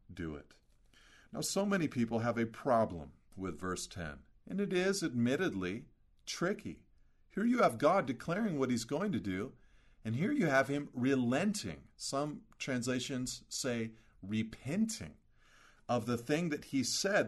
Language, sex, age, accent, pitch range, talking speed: English, male, 50-69, American, 105-140 Hz, 150 wpm